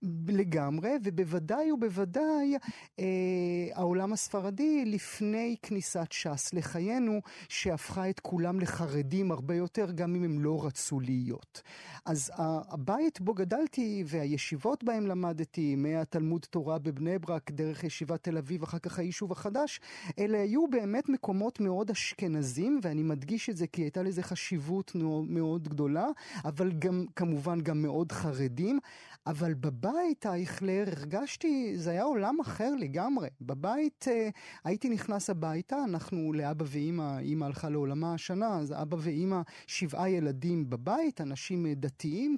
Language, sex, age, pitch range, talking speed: Hebrew, male, 30-49, 160-205 Hz, 130 wpm